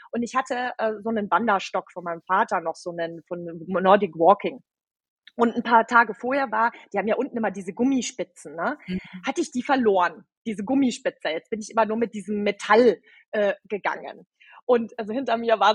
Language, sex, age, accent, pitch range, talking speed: German, female, 30-49, German, 225-315 Hz, 195 wpm